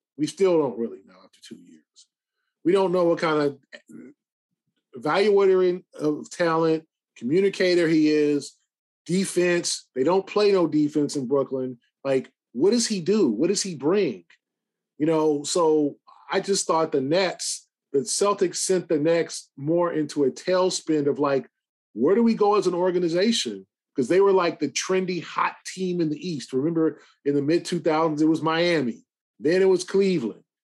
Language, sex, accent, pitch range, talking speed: English, male, American, 150-190 Hz, 165 wpm